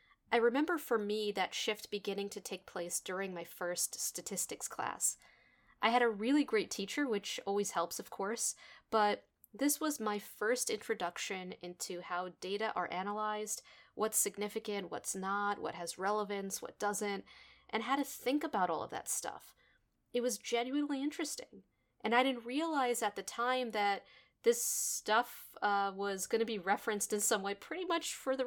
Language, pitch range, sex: English, 200-250 Hz, female